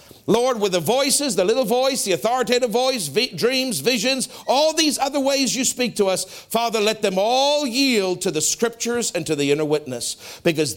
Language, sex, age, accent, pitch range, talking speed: English, male, 50-69, American, 195-265 Hz, 190 wpm